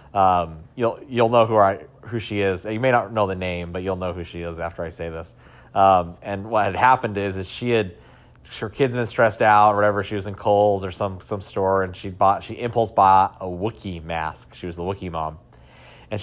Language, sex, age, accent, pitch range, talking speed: English, male, 30-49, American, 90-115 Hz, 235 wpm